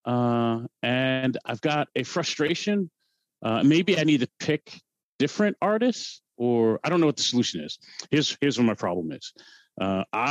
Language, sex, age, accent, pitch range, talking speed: English, male, 40-59, American, 95-125 Hz, 170 wpm